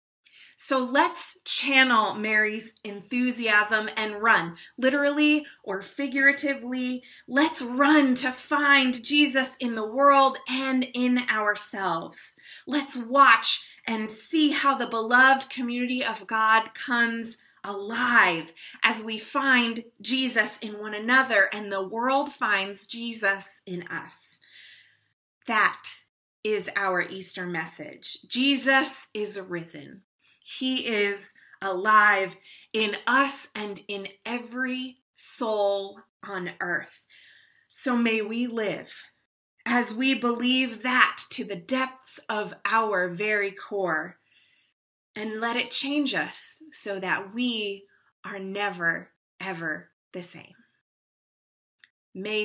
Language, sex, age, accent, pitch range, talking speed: English, female, 20-39, American, 200-260 Hz, 110 wpm